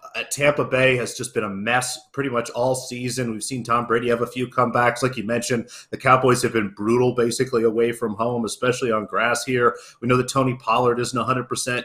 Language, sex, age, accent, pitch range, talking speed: English, male, 30-49, American, 115-135 Hz, 210 wpm